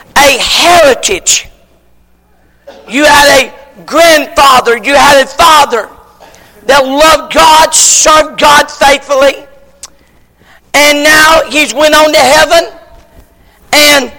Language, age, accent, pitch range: English, 50-69, American, 260-310 Hz